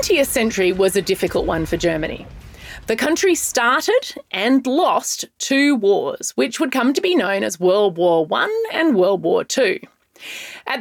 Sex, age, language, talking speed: female, 30-49, English, 170 wpm